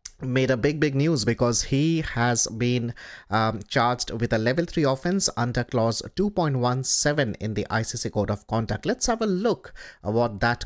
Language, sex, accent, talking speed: Bengali, male, native, 175 wpm